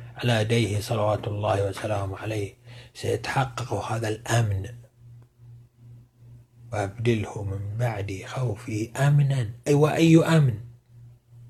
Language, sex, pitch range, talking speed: Arabic, male, 105-120 Hz, 90 wpm